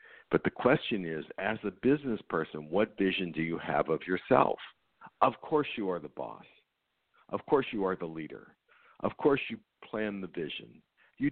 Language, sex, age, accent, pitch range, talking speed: English, male, 60-79, American, 100-135 Hz, 180 wpm